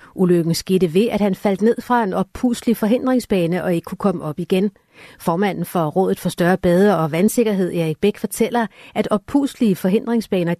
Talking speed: 175 wpm